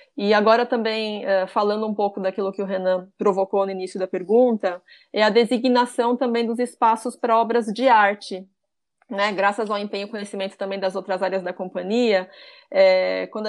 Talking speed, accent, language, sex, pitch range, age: 175 wpm, Brazilian, Portuguese, female, 195-235 Hz, 20-39